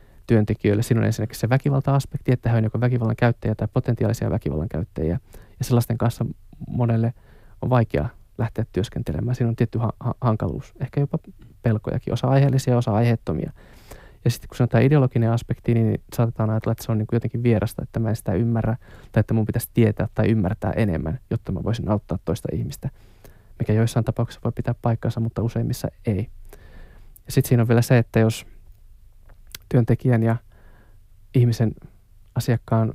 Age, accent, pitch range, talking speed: 20-39, native, 105-120 Hz, 160 wpm